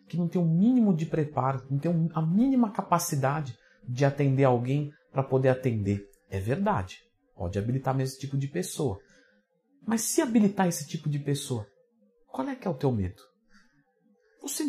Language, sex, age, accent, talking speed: Portuguese, male, 50-69, Brazilian, 170 wpm